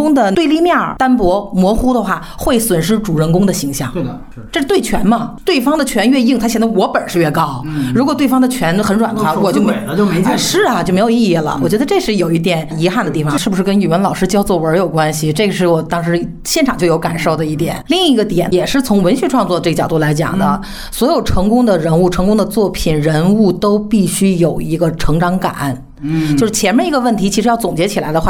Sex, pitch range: female, 165-225 Hz